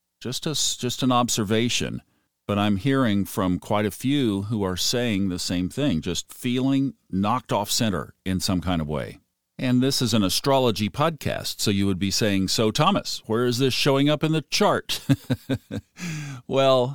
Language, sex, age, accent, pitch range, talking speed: English, male, 50-69, American, 90-125 Hz, 175 wpm